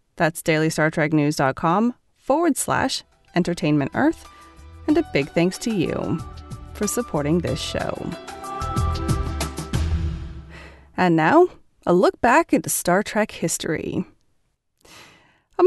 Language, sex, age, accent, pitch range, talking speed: English, female, 30-49, American, 160-230 Hz, 100 wpm